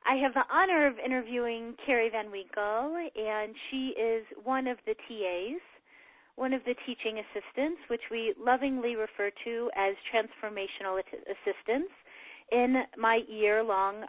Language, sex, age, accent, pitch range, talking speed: English, female, 30-49, American, 215-265 Hz, 135 wpm